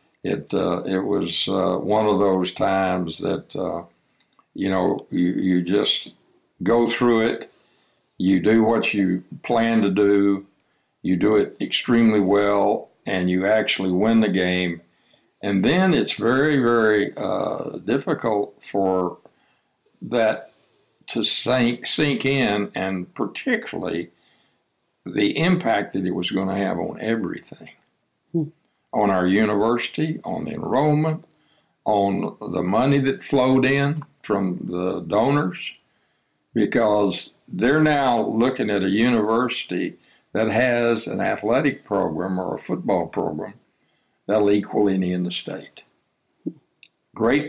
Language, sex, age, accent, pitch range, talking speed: English, male, 60-79, American, 95-125 Hz, 125 wpm